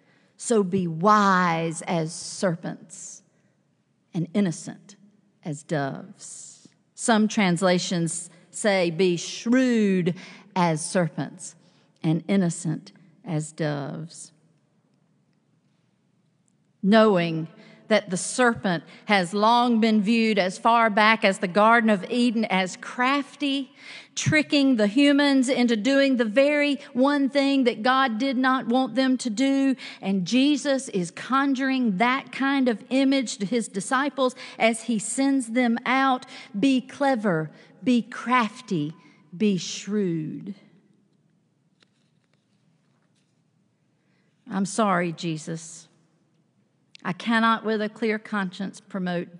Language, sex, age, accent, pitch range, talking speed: English, female, 50-69, American, 175-245 Hz, 105 wpm